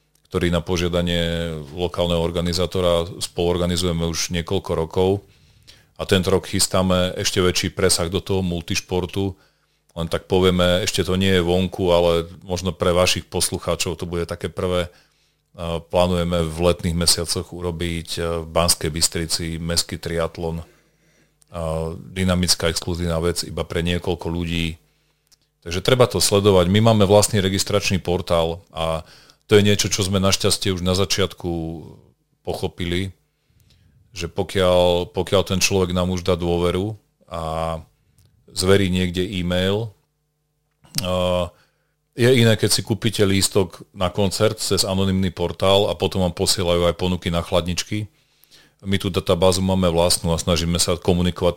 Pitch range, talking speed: 85-95 Hz, 135 wpm